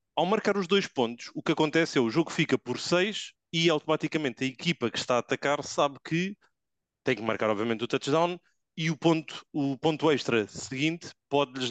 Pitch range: 125-155 Hz